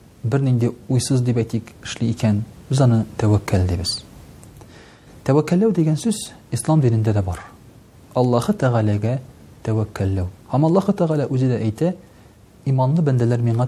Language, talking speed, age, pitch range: Russian, 135 wpm, 40-59, 110-140 Hz